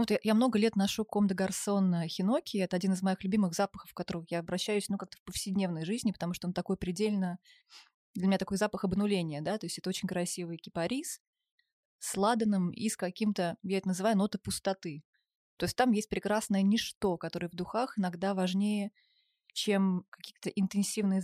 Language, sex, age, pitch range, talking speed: Russian, female, 20-39, 180-210 Hz, 180 wpm